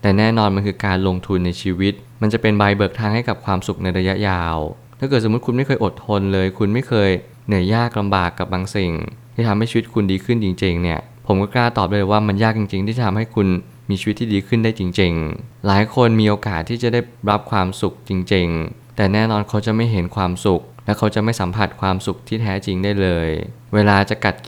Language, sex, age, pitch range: Thai, male, 20-39, 95-115 Hz